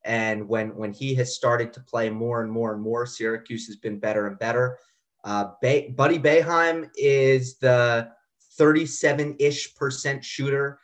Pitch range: 120-145 Hz